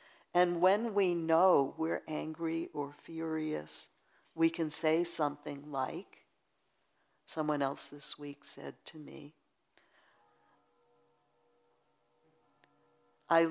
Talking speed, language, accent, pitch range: 95 wpm, English, American, 145-175 Hz